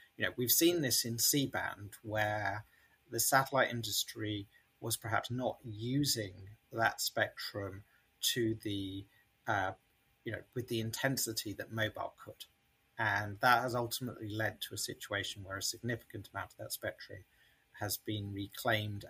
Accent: British